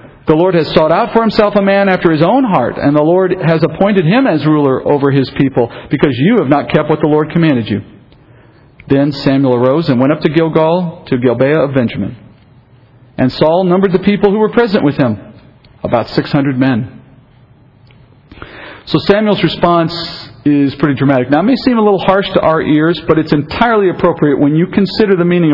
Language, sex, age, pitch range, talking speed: English, male, 50-69, 135-175 Hz, 195 wpm